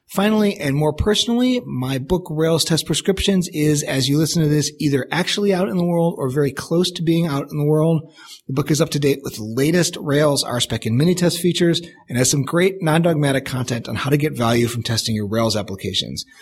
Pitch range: 125-170 Hz